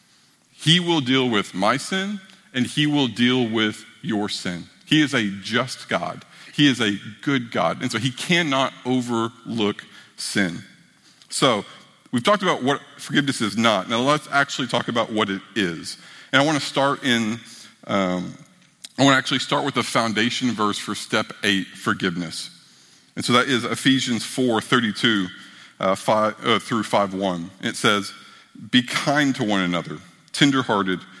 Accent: American